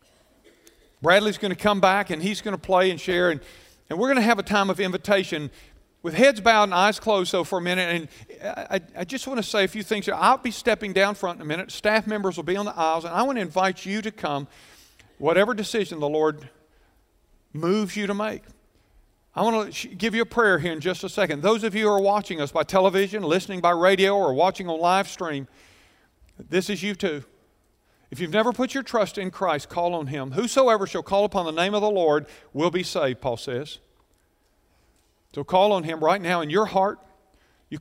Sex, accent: male, American